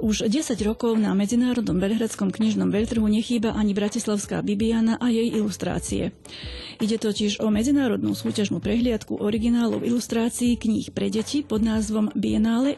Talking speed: 135 wpm